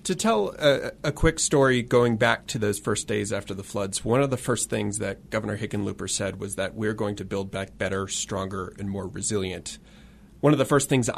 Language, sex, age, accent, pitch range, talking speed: English, male, 30-49, American, 105-115 Hz, 220 wpm